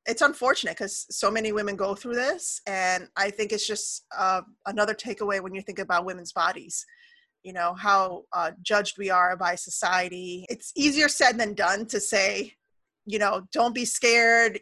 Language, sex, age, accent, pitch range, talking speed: English, female, 30-49, American, 195-240 Hz, 180 wpm